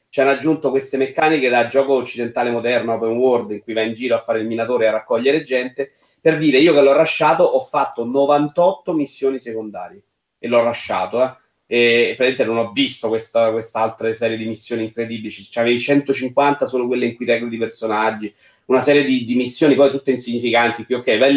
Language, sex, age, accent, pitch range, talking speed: Italian, male, 30-49, native, 115-135 Hz, 190 wpm